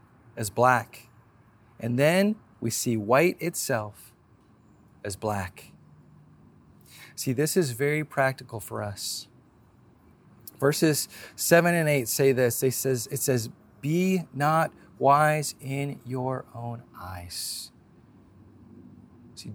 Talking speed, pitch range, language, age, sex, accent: 105 wpm, 115-150 Hz, English, 30-49, male, American